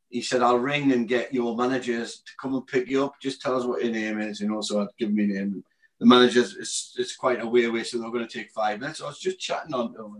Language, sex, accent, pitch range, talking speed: English, male, British, 115-135 Hz, 290 wpm